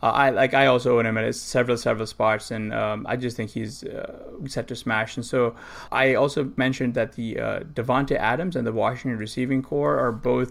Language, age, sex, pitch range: English, 20-39, male, 110-130 Hz